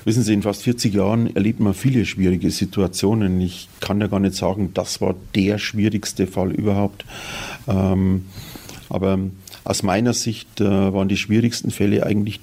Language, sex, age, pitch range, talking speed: German, male, 50-69, 95-110 Hz, 155 wpm